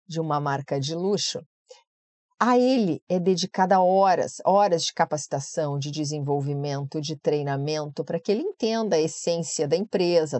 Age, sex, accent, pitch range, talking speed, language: 40-59, female, Brazilian, 160-220 Hz, 145 wpm, Portuguese